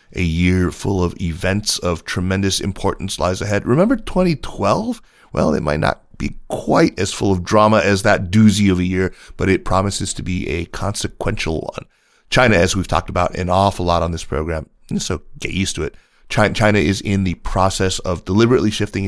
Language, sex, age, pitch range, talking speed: English, male, 30-49, 85-105 Hz, 190 wpm